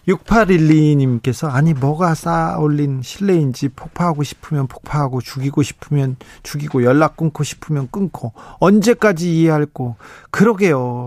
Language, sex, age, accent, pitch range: Korean, male, 40-59, native, 135-185 Hz